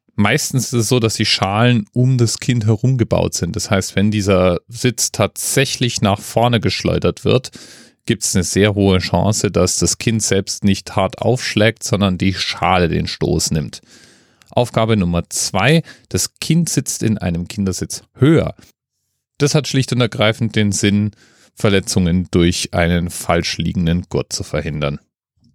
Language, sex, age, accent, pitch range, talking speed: German, male, 30-49, German, 95-115 Hz, 155 wpm